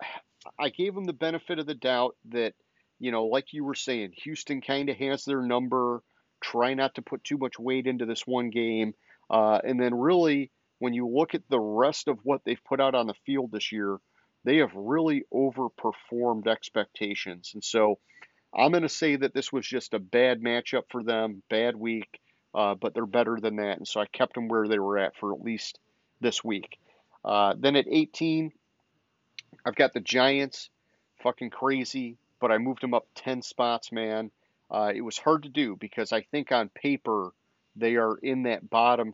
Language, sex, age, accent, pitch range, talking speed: English, male, 40-59, American, 110-140 Hz, 195 wpm